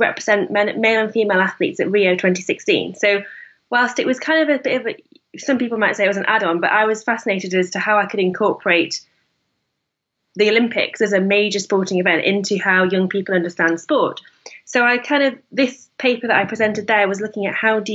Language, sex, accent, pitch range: English, female, British, 190-225 Hz